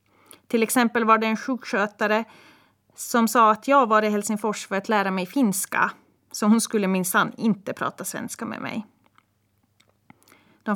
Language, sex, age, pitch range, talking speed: Swedish, female, 30-49, 210-245 Hz, 155 wpm